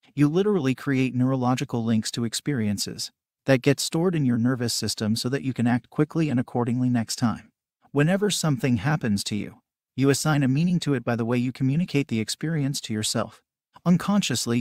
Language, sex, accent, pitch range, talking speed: English, male, American, 115-140 Hz, 185 wpm